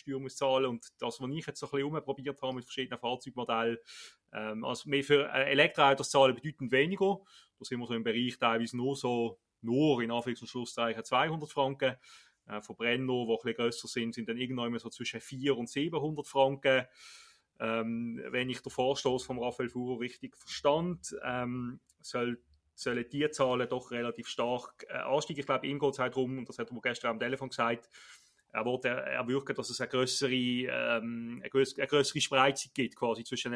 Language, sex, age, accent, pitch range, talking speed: German, male, 30-49, Austrian, 120-140 Hz, 170 wpm